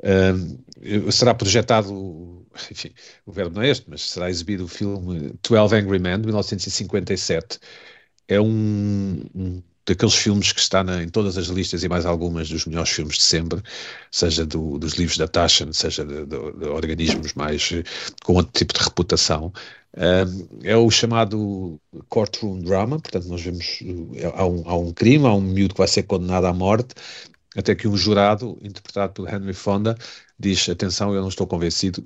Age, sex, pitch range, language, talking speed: 50-69, male, 90-110 Hz, Portuguese, 175 wpm